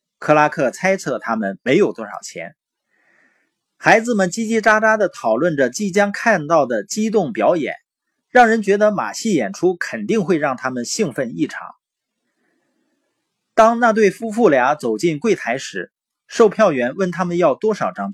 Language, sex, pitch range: Chinese, male, 150-225 Hz